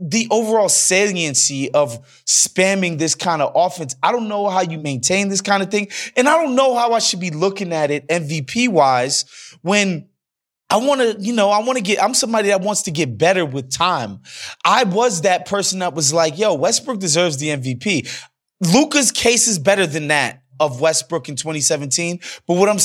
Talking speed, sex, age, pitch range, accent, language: 195 wpm, male, 20-39, 160-235 Hz, American, English